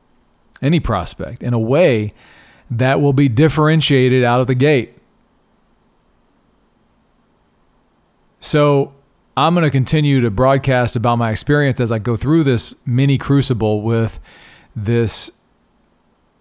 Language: English